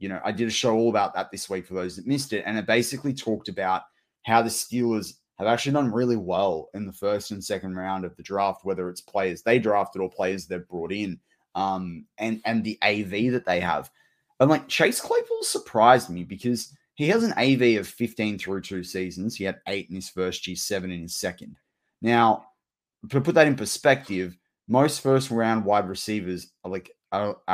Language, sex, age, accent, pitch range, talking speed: English, male, 20-39, Australian, 90-115 Hz, 210 wpm